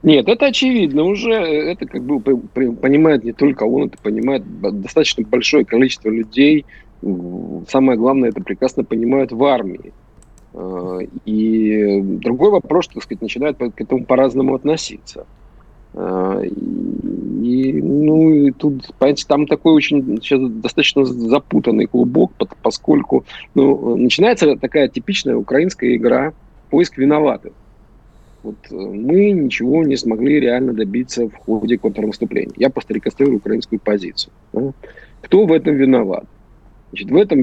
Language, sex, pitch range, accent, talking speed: Russian, male, 110-150 Hz, native, 120 wpm